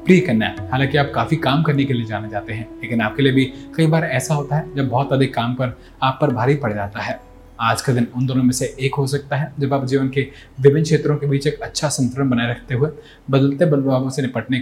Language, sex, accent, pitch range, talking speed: Hindi, male, native, 110-145 Hz, 255 wpm